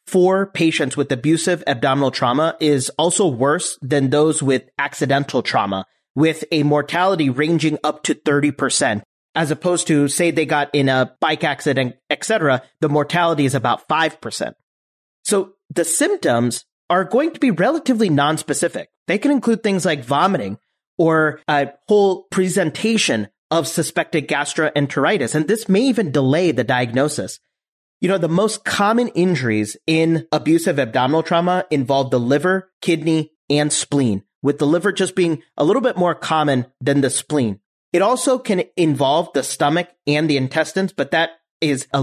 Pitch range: 140-175 Hz